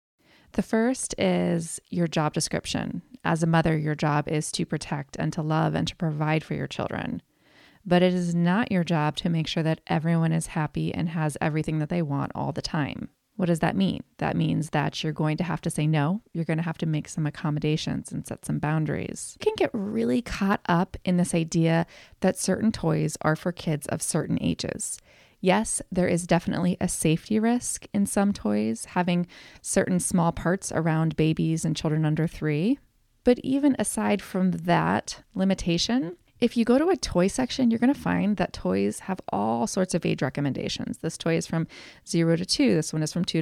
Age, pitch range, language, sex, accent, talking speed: 20-39, 160-195 Hz, English, female, American, 200 wpm